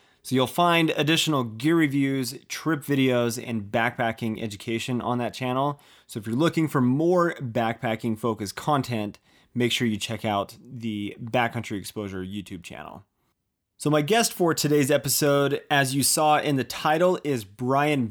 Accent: American